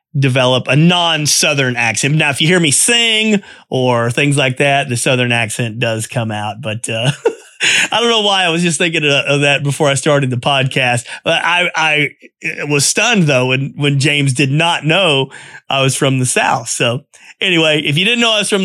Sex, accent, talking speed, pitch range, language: male, American, 205 wpm, 135-170 Hz, English